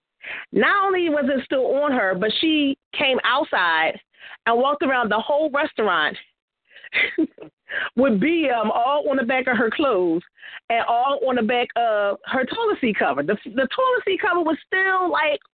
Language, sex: English, female